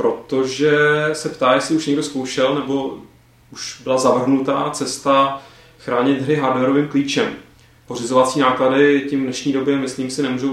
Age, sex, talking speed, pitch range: 30-49, male, 135 wpm, 125-145 Hz